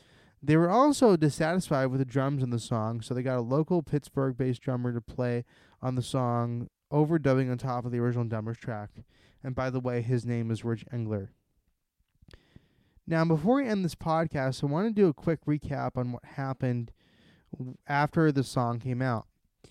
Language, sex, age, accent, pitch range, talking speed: English, male, 20-39, American, 120-155 Hz, 185 wpm